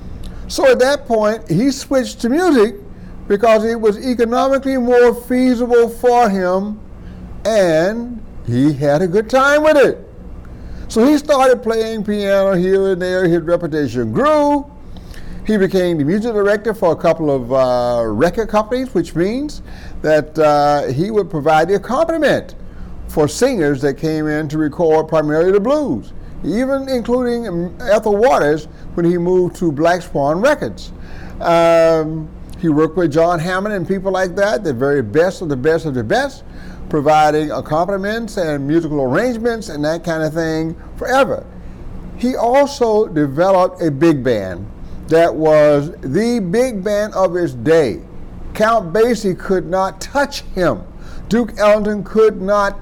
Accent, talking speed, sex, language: American, 150 wpm, male, English